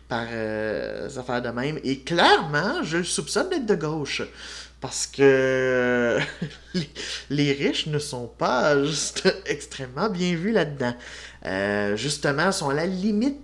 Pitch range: 135-195 Hz